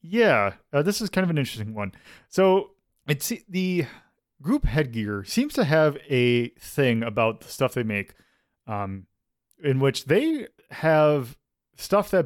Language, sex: English, male